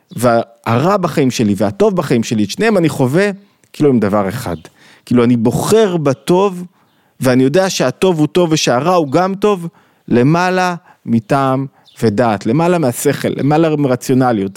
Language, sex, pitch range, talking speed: Hebrew, male, 115-160 Hz, 140 wpm